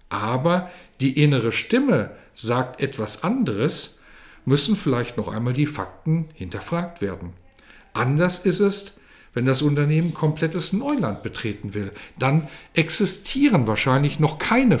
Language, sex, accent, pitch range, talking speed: German, male, German, 115-180 Hz, 120 wpm